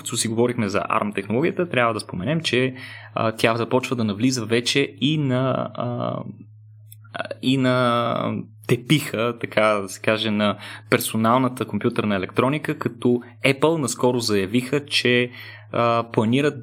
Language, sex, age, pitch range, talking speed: Bulgarian, male, 20-39, 105-125 Hz, 120 wpm